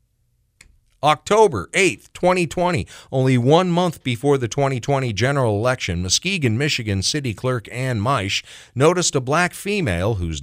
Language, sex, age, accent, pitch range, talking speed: English, male, 40-59, American, 105-140 Hz, 125 wpm